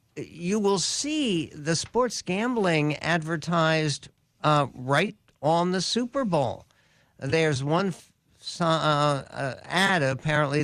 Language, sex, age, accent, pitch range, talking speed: English, male, 60-79, American, 135-160 Hz, 115 wpm